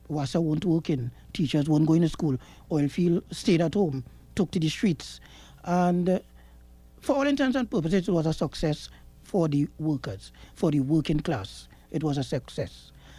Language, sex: English, male